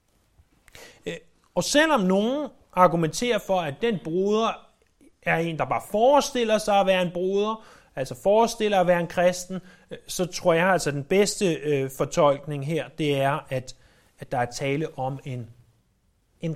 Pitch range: 135-205 Hz